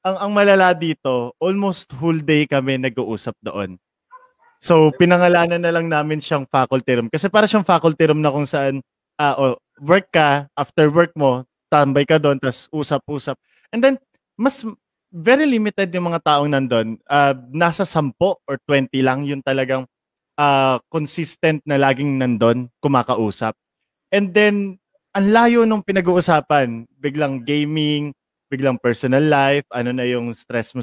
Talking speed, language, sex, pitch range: 150 wpm, Filipino, male, 135-180 Hz